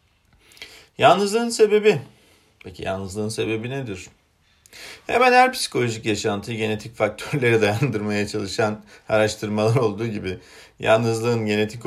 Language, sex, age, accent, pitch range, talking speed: Turkish, male, 40-59, native, 95-110 Hz, 95 wpm